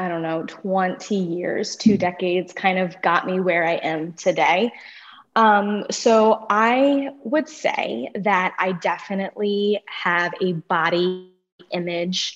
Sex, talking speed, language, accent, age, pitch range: female, 130 wpm, English, American, 20-39, 185-210 Hz